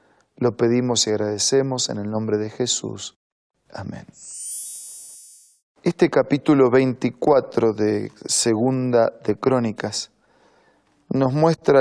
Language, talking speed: Spanish, 95 wpm